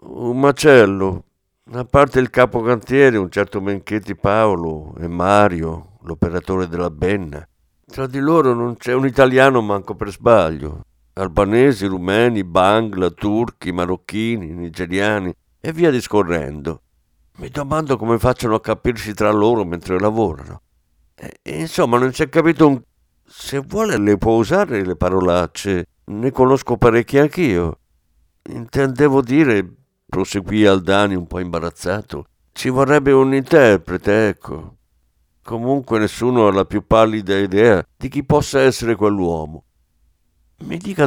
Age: 60-79